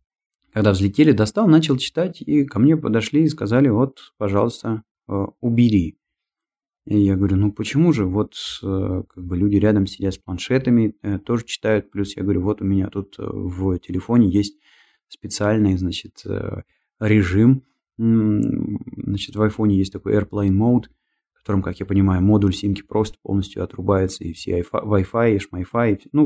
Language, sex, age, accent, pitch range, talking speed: Russian, male, 20-39, native, 100-120 Hz, 155 wpm